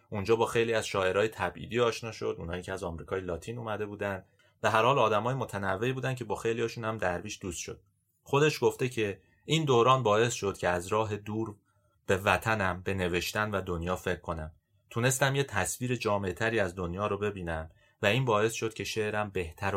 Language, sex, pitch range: Persian, male, 95-120 Hz